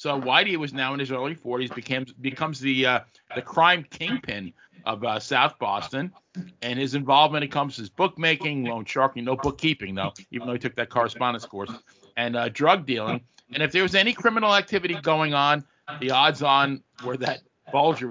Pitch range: 120-155 Hz